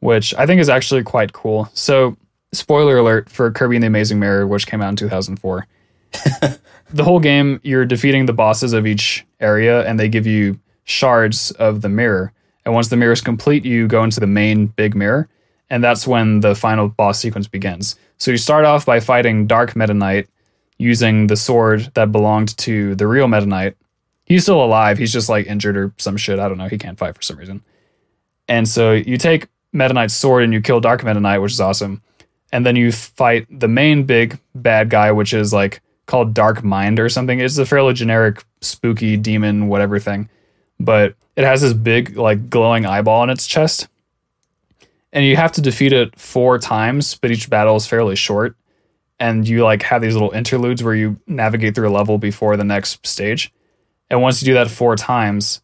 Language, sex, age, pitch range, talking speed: English, male, 20-39, 105-125 Hz, 200 wpm